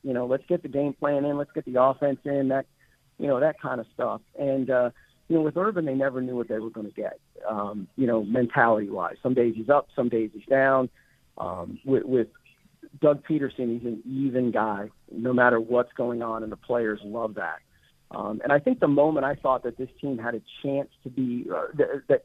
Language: English